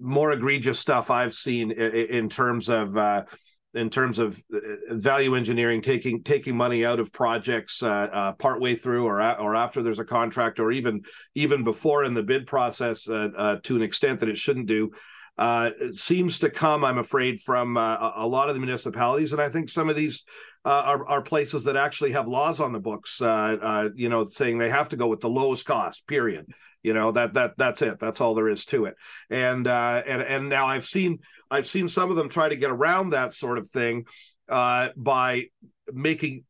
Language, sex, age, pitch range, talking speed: English, male, 40-59, 115-145 Hz, 210 wpm